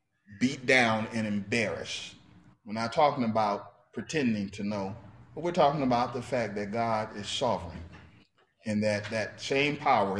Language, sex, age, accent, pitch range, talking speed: English, male, 40-59, American, 100-135 Hz, 155 wpm